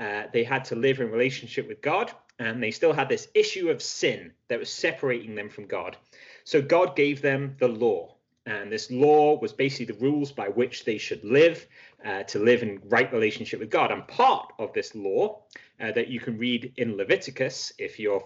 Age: 30-49